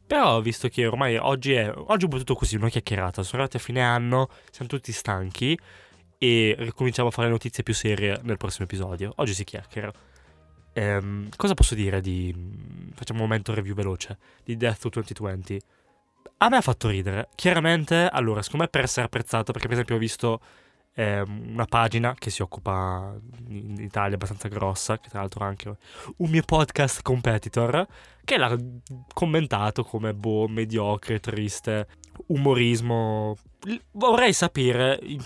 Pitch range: 105-130 Hz